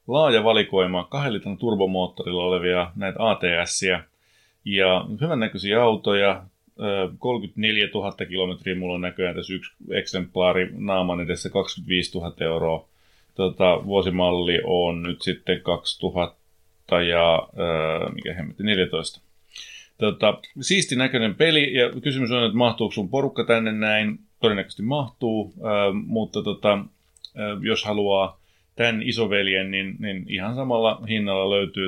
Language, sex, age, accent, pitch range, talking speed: Finnish, male, 30-49, native, 90-110 Hz, 110 wpm